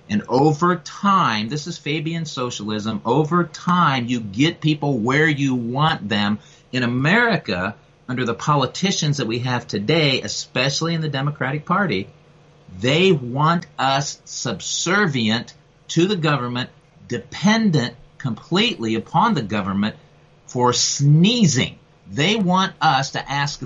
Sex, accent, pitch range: male, American, 120-165 Hz